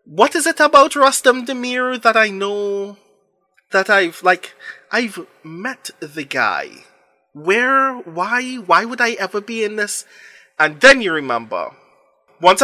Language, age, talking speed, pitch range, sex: English, 20-39, 140 wpm, 145-200 Hz, male